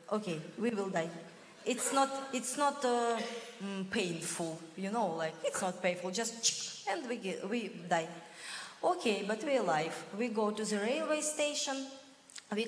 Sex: female